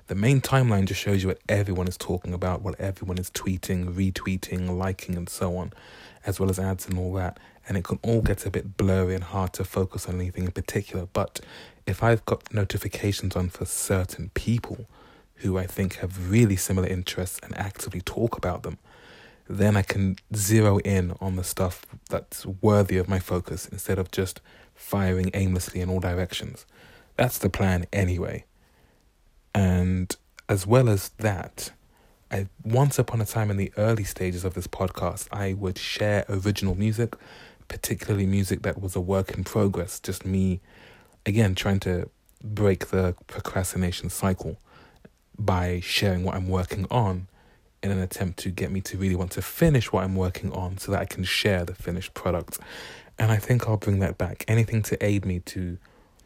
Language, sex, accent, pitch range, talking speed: English, male, British, 90-105 Hz, 180 wpm